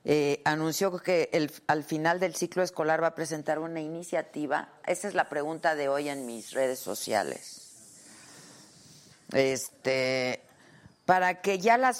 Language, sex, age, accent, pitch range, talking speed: Spanish, female, 40-59, Mexican, 140-190 Hz, 135 wpm